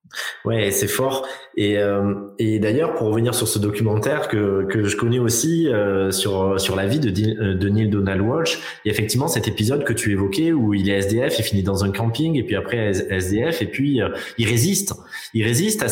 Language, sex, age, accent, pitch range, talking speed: French, male, 20-39, French, 105-125 Hz, 220 wpm